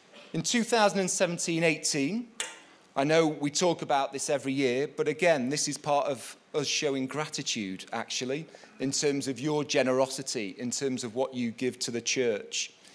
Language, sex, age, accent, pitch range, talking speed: English, male, 30-49, British, 130-160 Hz, 160 wpm